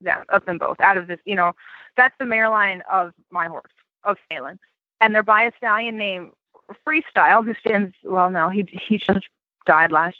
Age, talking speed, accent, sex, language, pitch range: 20-39, 200 wpm, American, female, English, 170-220 Hz